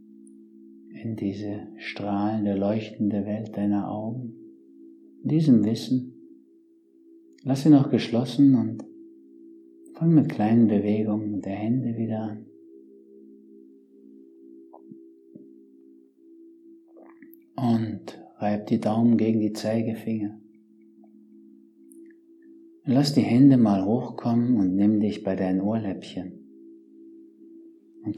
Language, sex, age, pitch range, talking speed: German, male, 50-69, 95-120 Hz, 85 wpm